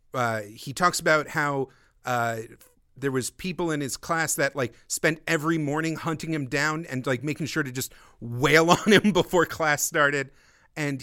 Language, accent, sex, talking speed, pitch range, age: English, American, male, 180 wpm, 130-180 Hz, 40-59